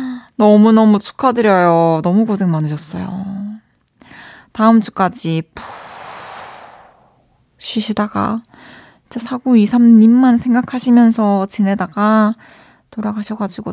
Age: 20-39